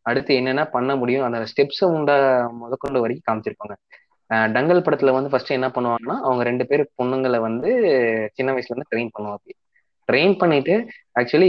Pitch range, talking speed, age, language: 115-145 Hz, 150 wpm, 20-39, Tamil